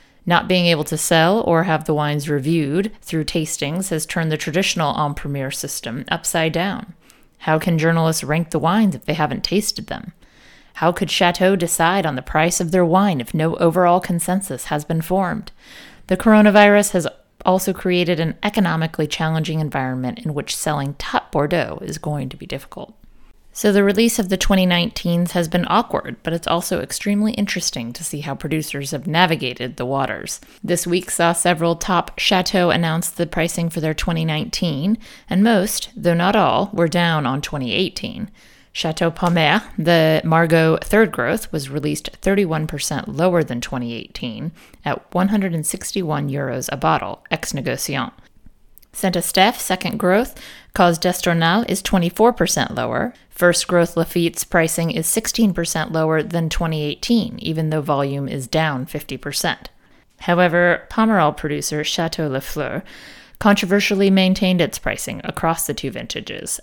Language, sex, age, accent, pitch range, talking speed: English, female, 30-49, American, 155-190 Hz, 155 wpm